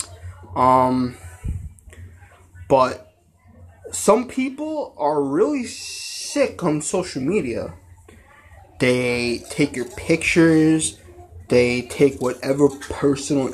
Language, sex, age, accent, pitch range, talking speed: English, male, 20-39, American, 95-160 Hz, 80 wpm